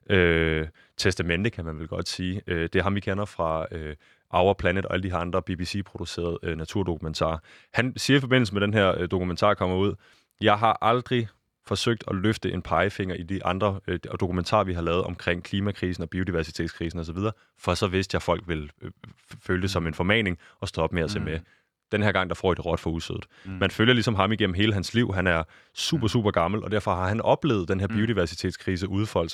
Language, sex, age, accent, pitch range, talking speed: Danish, male, 20-39, native, 90-105 Hz, 215 wpm